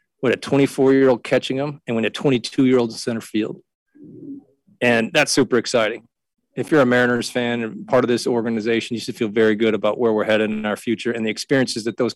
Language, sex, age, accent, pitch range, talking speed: English, male, 40-59, American, 115-135 Hz, 205 wpm